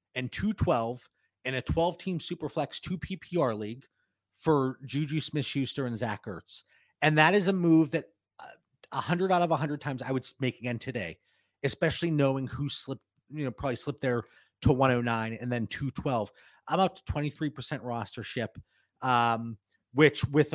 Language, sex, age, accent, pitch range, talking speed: English, male, 30-49, American, 125-160 Hz, 180 wpm